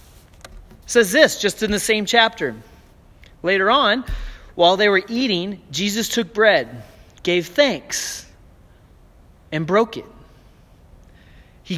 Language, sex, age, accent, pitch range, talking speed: English, male, 30-49, American, 160-255 Hz, 110 wpm